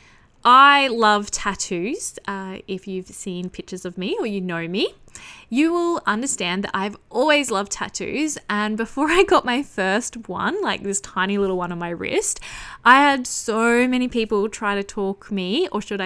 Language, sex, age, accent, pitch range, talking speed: English, female, 20-39, Australian, 195-255 Hz, 180 wpm